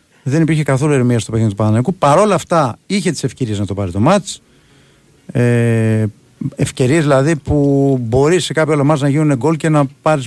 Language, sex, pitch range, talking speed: Greek, male, 120-155 Hz, 185 wpm